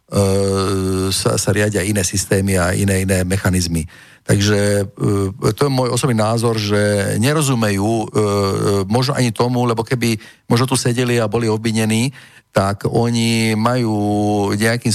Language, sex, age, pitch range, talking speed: Slovak, male, 50-69, 100-115 Hz, 130 wpm